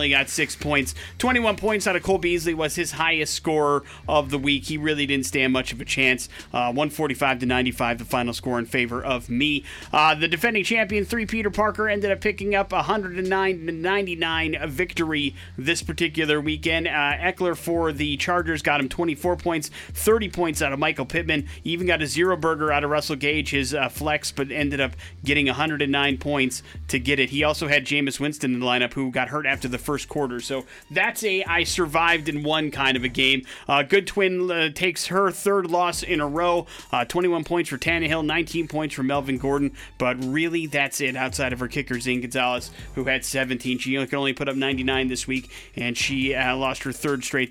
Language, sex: English, male